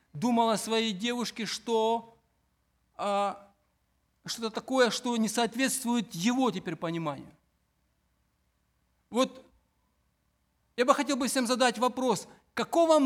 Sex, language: male, Ukrainian